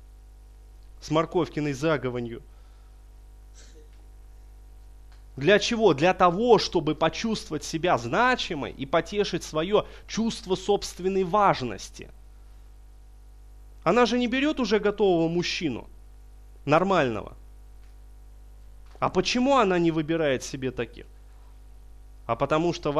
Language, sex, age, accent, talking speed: Russian, male, 20-39, native, 95 wpm